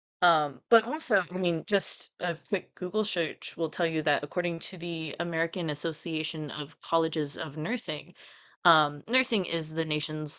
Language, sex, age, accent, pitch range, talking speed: English, female, 20-39, American, 150-175 Hz, 160 wpm